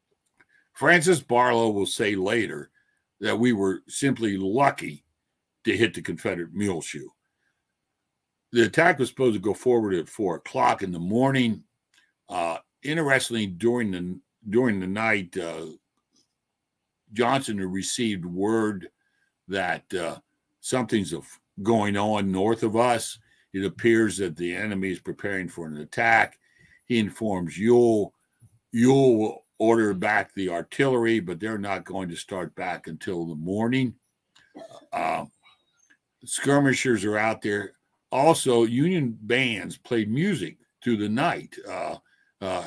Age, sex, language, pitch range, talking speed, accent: 60-79, male, English, 100-125 Hz, 130 wpm, American